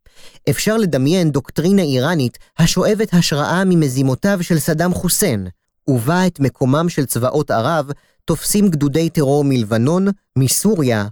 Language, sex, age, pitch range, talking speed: Hebrew, male, 30-49, 130-180 Hz, 115 wpm